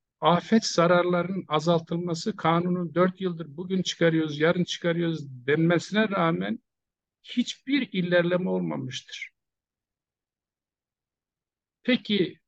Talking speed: 75 wpm